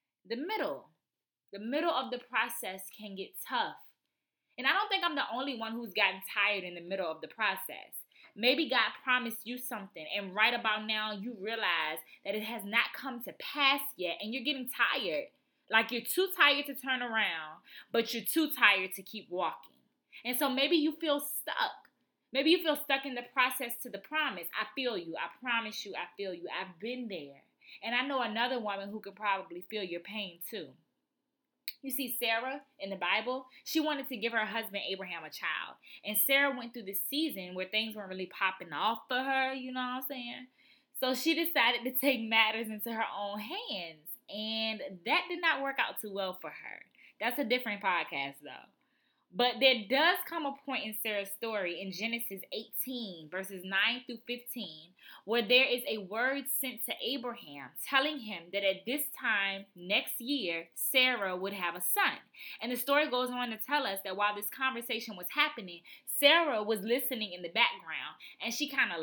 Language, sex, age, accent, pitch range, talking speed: English, female, 20-39, American, 200-265 Hz, 195 wpm